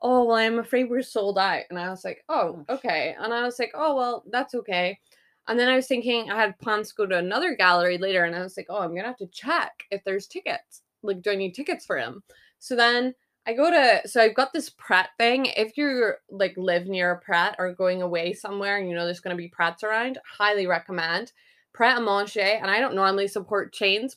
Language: English